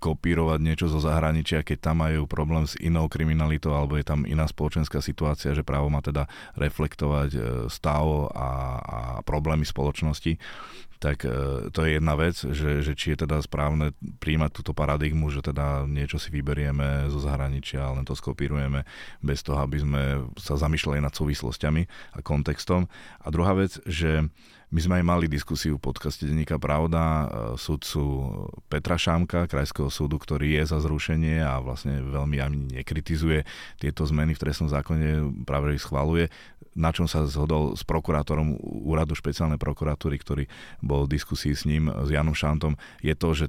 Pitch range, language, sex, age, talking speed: 70-80 Hz, Slovak, male, 30-49, 165 wpm